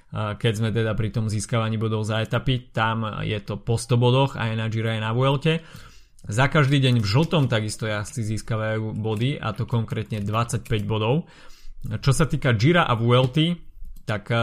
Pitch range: 110-130 Hz